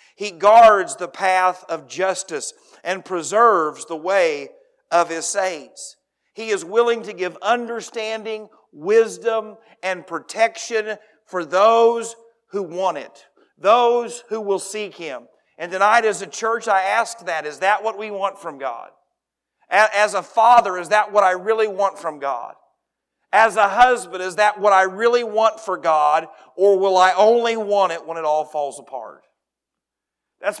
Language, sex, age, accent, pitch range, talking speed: English, male, 50-69, American, 185-230 Hz, 160 wpm